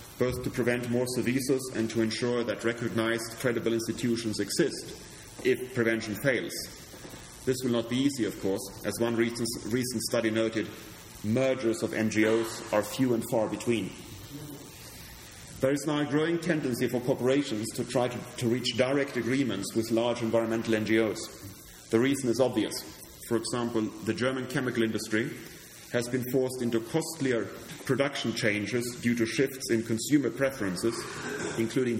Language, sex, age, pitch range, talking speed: English, male, 30-49, 110-130 Hz, 150 wpm